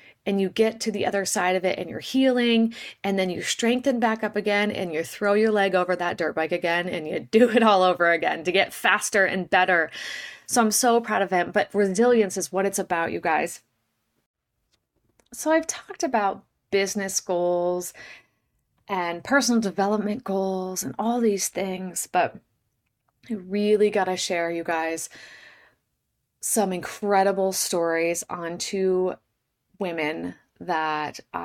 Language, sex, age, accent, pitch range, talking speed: English, female, 30-49, American, 170-205 Hz, 160 wpm